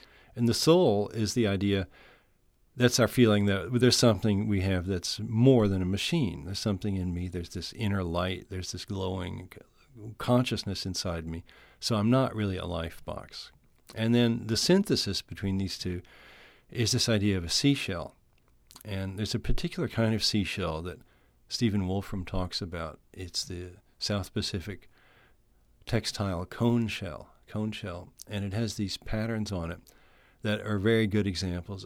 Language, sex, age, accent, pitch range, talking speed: English, male, 50-69, American, 90-115 Hz, 160 wpm